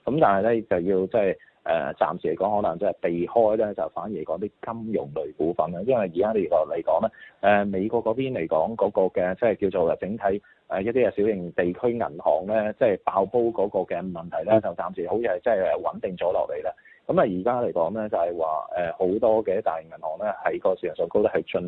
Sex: male